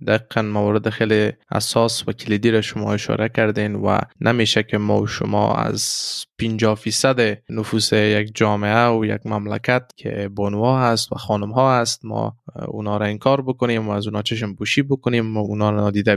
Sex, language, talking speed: male, Persian, 170 wpm